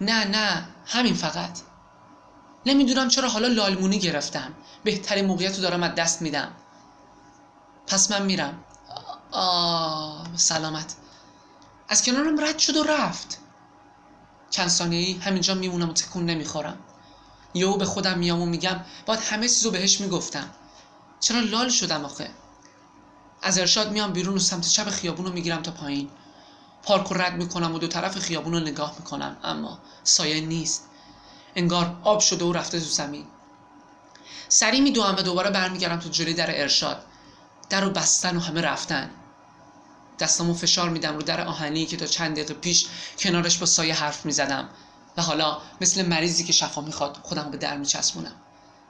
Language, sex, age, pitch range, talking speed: Persian, male, 20-39, 160-195 Hz, 150 wpm